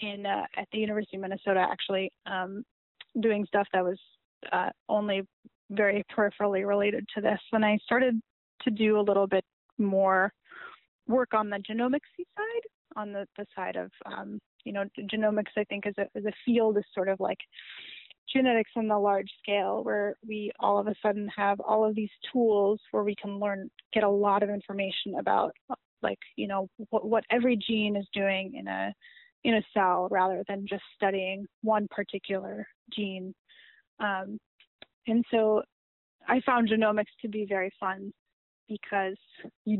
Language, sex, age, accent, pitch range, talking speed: English, female, 10-29, American, 200-220 Hz, 165 wpm